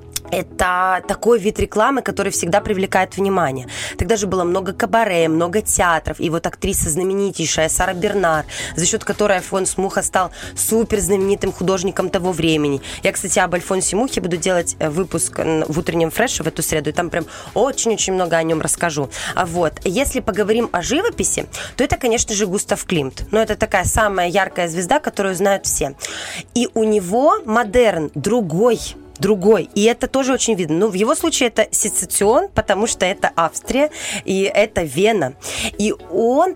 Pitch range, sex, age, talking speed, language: 175-225 Hz, female, 20-39, 165 wpm, Russian